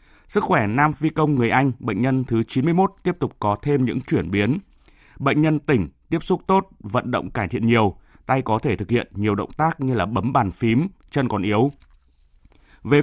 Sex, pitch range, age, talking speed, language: male, 105-135 Hz, 20-39, 210 wpm, Vietnamese